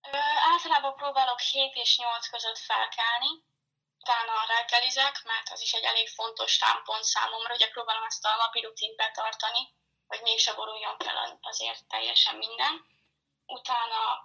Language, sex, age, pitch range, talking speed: Hungarian, female, 10-29, 220-270 Hz, 145 wpm